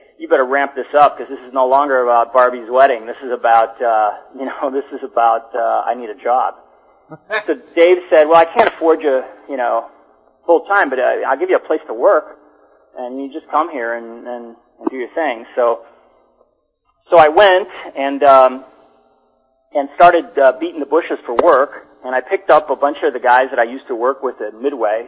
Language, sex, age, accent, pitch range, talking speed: English, male, 40-59, American, 115-140 Hz, 215 wpm